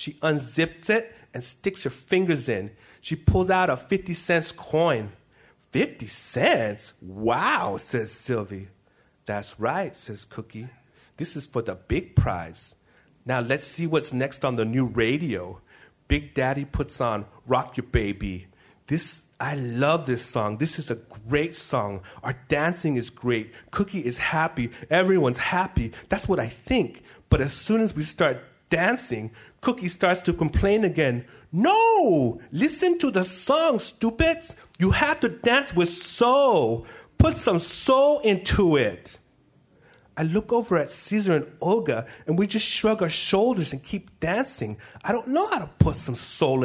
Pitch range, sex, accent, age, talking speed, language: 120-195 Hz, male, American, 40-59, 160 wpm, English